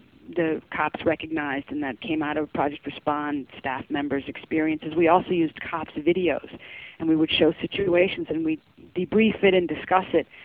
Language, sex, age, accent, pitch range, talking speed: English, female, 40-59, American, 160-190 Hz, 170 wpm